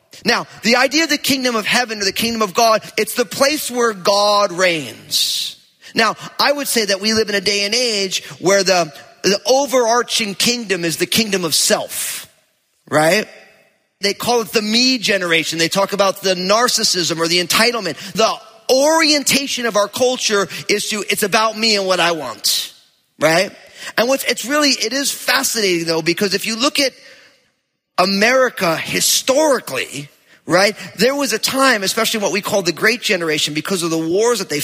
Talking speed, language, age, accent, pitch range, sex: 180 wpm, English, 30-49, American, 165-230 Hz, male